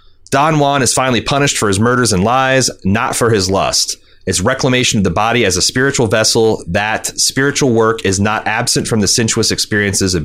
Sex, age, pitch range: male, 30-49, 95-125 Hz